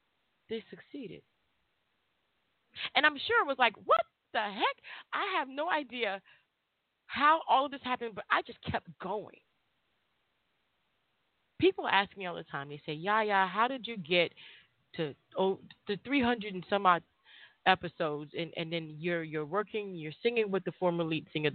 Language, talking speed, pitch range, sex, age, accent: English, 165 wpm, 190-290 Hz, female, 30-49, American